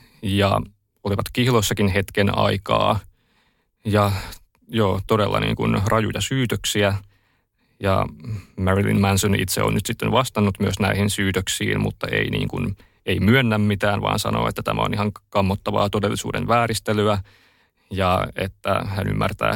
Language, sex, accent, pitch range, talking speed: Finnish, male, native, 100-110 Hz, 130 wpm